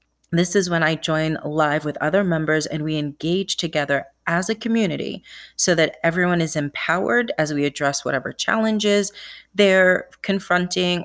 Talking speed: 150 wpm